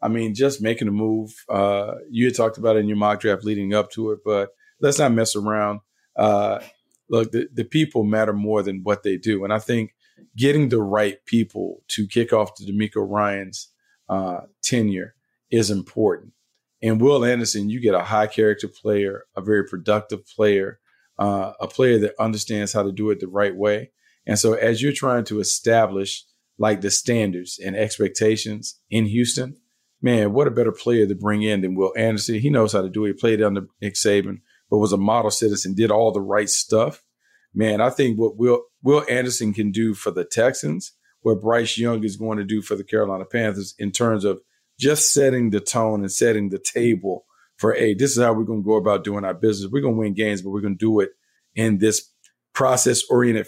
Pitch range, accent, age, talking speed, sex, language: 105-115 Hz, American, 40-59, 210 wpm, male, English